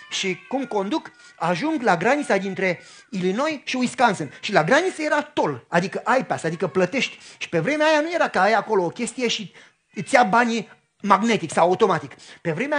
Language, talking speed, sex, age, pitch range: Romanian, 185 wpm, male, 30-49, 175-255 Hz